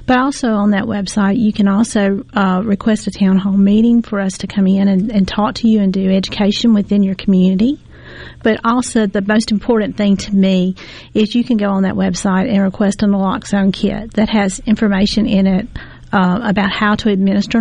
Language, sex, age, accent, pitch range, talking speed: English, female, 40-59, American, 195-220 Hz, 205 wpm